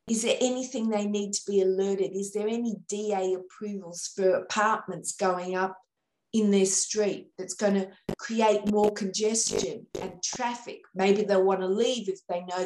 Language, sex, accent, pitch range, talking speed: English, female, Australian, 200-230 Hz, 170 wpm